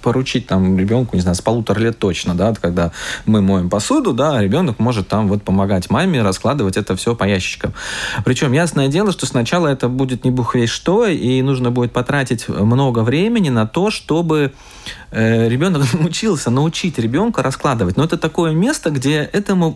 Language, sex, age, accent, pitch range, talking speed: Russian, male, 20-39, native, 105-155 Hz, 175 wpm